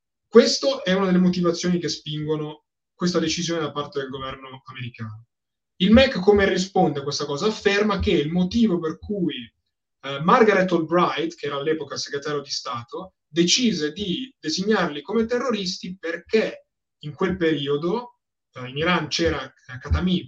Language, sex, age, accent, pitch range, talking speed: Italian, male, 20-39, native, 145-195 Hz, 150 wpm